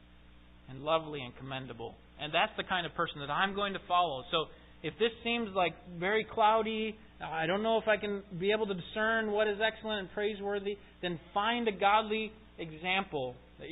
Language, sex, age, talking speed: English, male, 30-49, 190 wpm